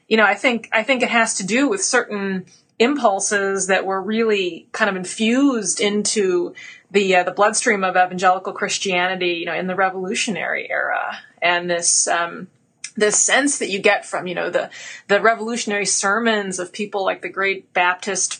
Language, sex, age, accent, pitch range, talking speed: English, female, 30-49, American, 185-225 Hz, 175 wpm